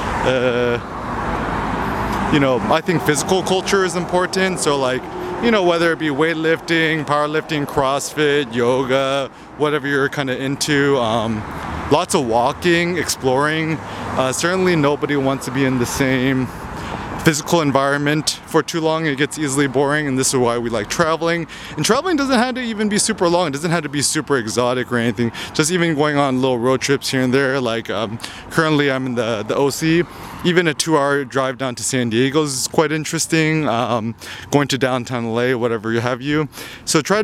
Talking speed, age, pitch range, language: 180 wpm, 20-39, 125-160 Hz, English